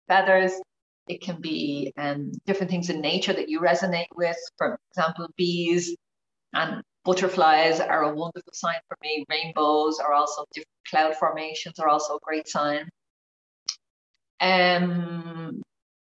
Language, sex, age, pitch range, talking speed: English, female, 30-49, 155-200 Hz, 135 wpm